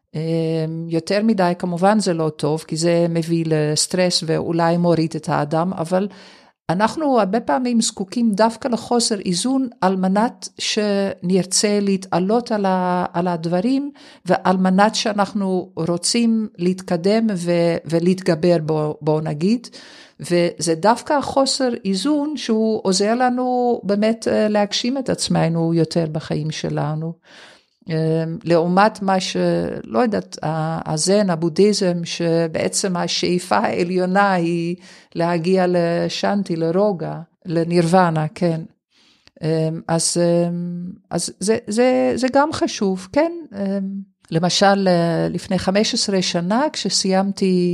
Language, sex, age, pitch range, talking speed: Hebrew, female, 50-69, 170-215 Hz, 100 wpm